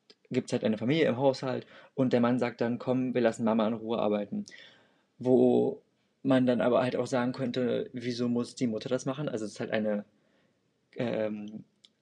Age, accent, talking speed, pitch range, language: 20-39, German, 195 wpm, 110-130 Hz, German